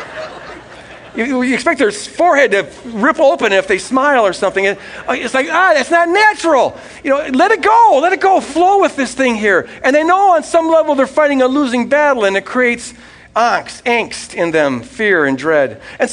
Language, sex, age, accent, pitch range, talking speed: English, male, 50-69, American, 210-295 Hz, 195 wpm